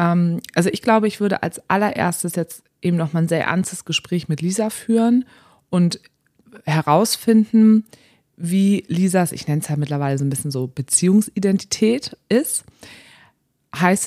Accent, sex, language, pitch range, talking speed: German, female, German, 150-185 Hz, 145 wpm